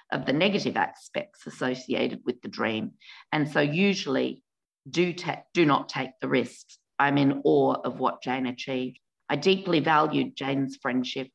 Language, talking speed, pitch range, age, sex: English, 155 wpm, 135-165 Hz, 40-59, female